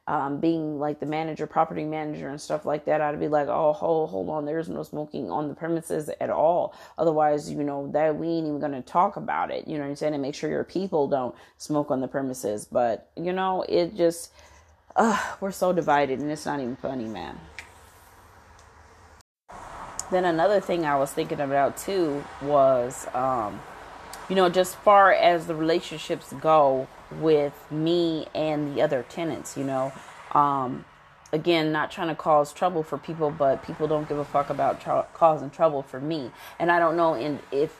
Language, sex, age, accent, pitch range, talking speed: English, female, 30-49, American, 145-170 Hz, 190 wpm